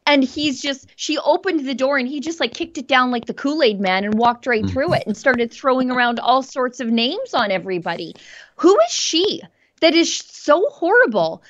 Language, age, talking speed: English, 20-39, 210 wpm